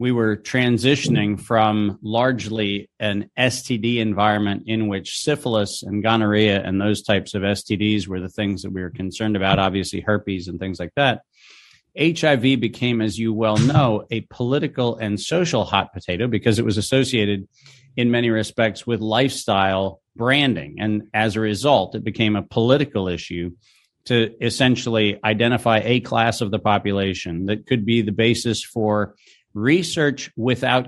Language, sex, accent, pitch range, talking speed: English, male, American, 105-125 Hz, 155 wpm